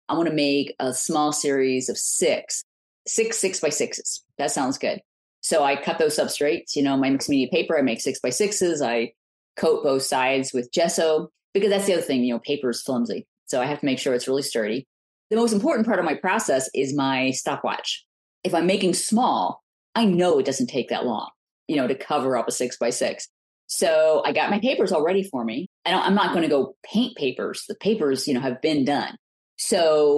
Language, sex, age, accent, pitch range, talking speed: English, female, 30-49, American, 140-190 Hz, 220 wpm